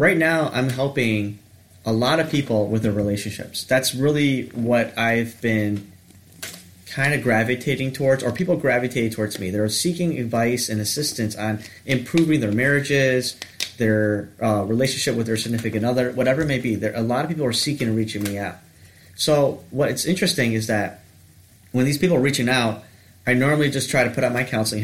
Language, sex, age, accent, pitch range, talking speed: English, male, 30-49, American, 105-135 Hz, 185 wpm